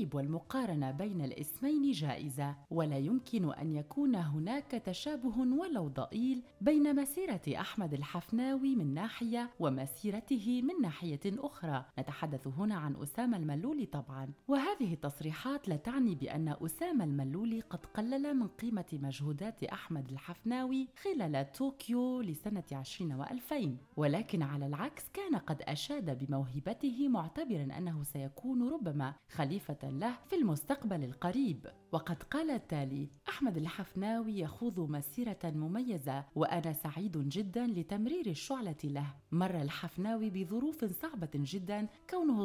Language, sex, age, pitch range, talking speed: Arabic, female, 30-49, 150-245 Hz, 115 wpm